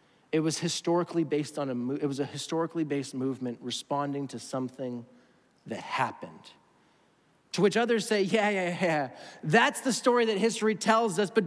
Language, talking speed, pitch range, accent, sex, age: English, 165 wpm, 125-165 Hz, American, male, 30-49